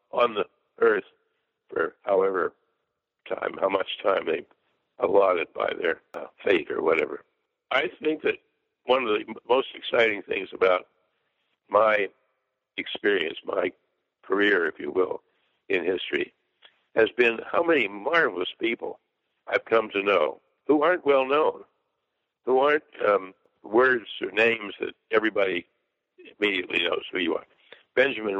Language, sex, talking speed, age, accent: English, male, 130 wpm, 60-79, American